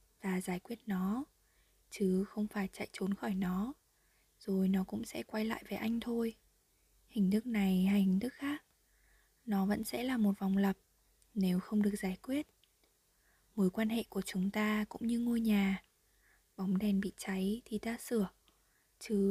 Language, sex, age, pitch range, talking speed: Vietnamese, female, 20-39, 195-225 Hz, 175 wpm